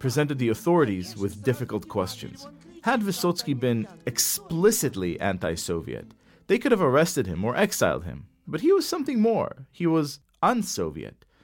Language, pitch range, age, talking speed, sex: English, 100-160 Hz, 40-59, 140 wpm, male